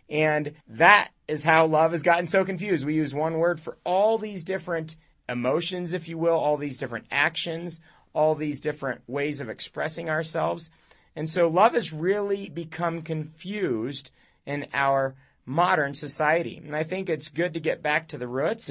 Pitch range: 145-180 Hz